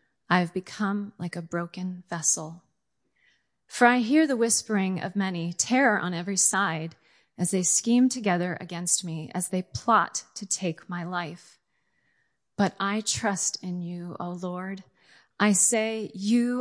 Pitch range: 175-220 Hz